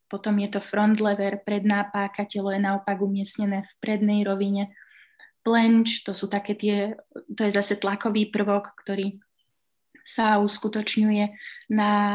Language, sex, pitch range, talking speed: Slovak, female, 200-220 Hz, 120 wpm